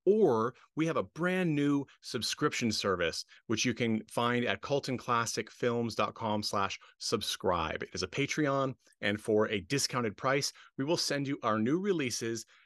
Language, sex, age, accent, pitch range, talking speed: English, male, 30-49, American, 105-135 Hz, 140 wpm